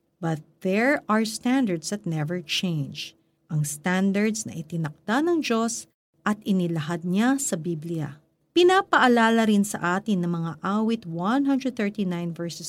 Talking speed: 130 wpm